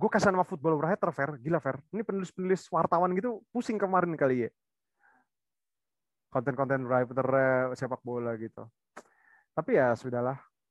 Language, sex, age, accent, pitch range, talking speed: Indonesian, male, 30-49, native, 130-170 Hz, 130 wpm